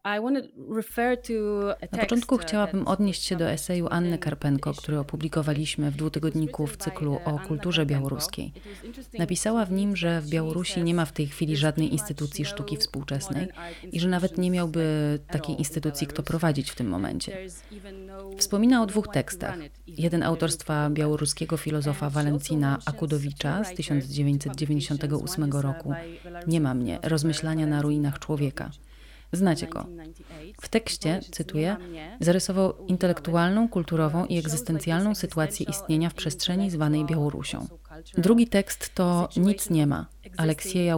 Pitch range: 150-180 Hz